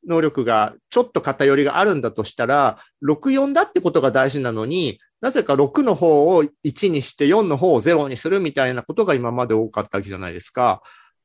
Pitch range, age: 130-215 Hz, 40-59